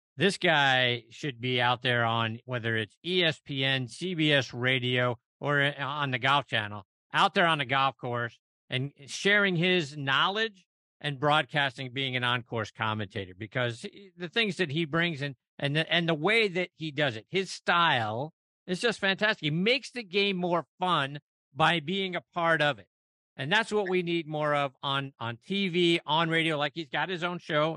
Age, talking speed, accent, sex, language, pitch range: 50-69, 185 wpm, American, male, English, 120-165 Hz